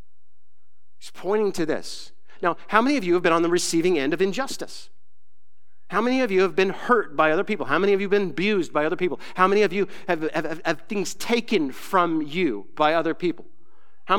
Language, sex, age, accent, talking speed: English, male, 40-59, American, 220 wpm